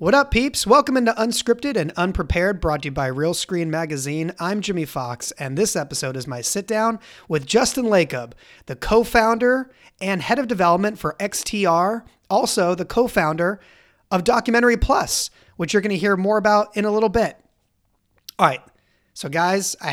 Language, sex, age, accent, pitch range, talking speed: English, male, 30-49, American, 150-210 Hz, 170 wpm